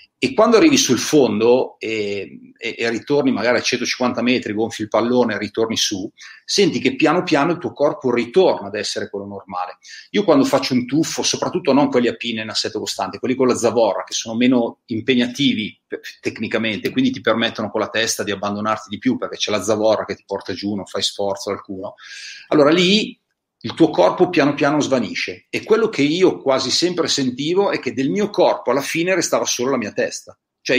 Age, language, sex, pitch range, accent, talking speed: 40-59, Italian, male, 110-160 Hz, native, 200 wpm